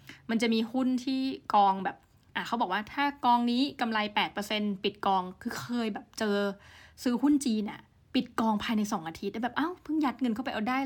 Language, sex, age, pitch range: Thai, female, 20-39, 200-245 Hz